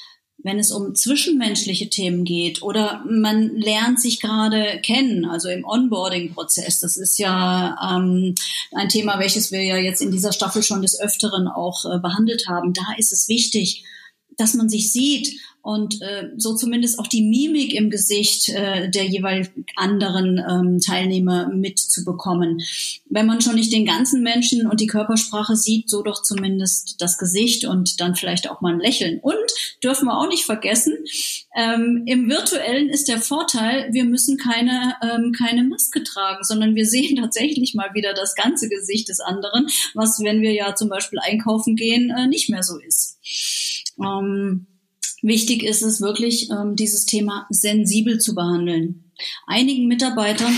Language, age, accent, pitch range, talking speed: German, 30-49, German, 190-235 Hz, 165 wpm